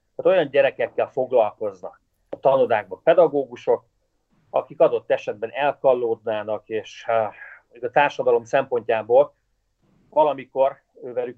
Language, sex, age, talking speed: Hungarian, male, 40-59, 90 wpm